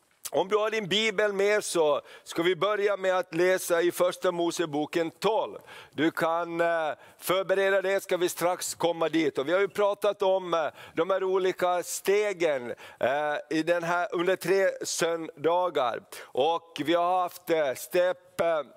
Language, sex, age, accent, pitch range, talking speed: Swedish, male, 50-69, native, 175-200 Hz, 150 wpm